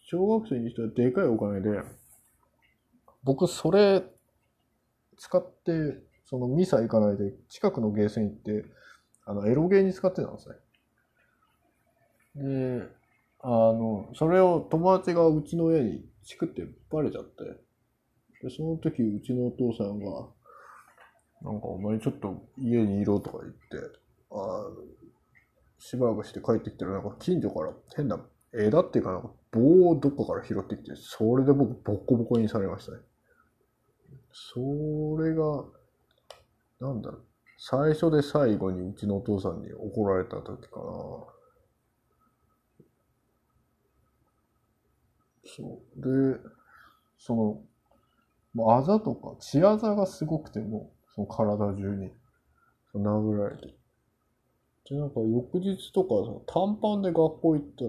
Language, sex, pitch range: Japanese, male, 105-160 Hz